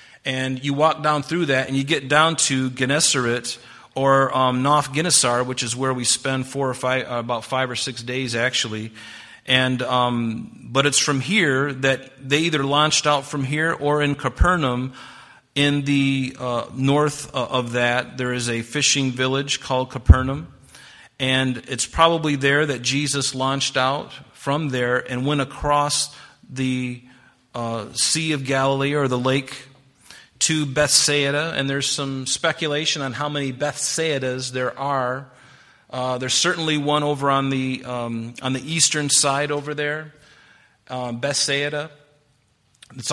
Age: 40-59